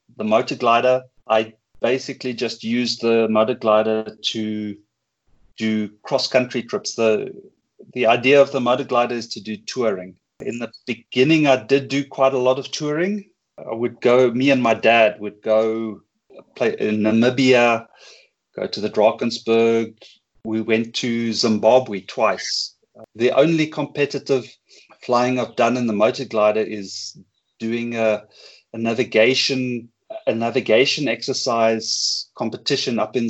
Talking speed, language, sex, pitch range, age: 140 wpm, English, male, 110-125 Hz, 30-49